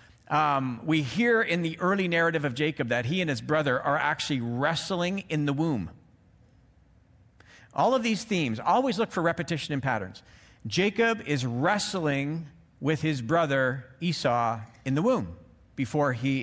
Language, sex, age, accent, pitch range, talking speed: English, male, 50-69, American, 130-175 Hz, 155 wpm